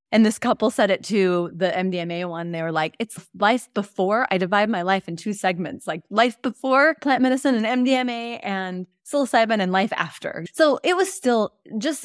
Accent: American